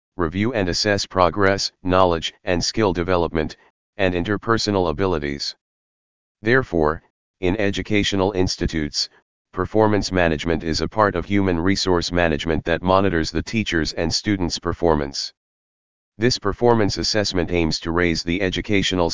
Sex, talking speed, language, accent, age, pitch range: male, 120 wpm, English, American, 40-59, 80-100 Hz